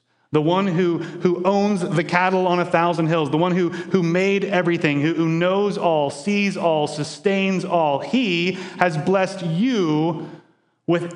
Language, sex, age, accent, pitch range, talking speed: English, male, 30-49, American, 160-200 Hz, 160 wpm